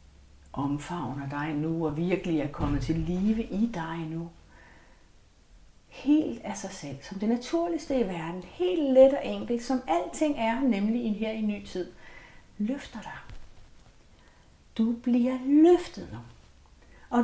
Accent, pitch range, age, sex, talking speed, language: native, 145-240 Hz, 60-79, female, 145 wpm, Danish